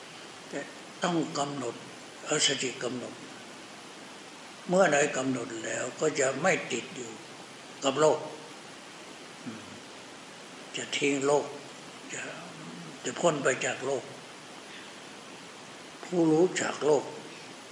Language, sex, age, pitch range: Thai, male, 60-79, 125-145 Hz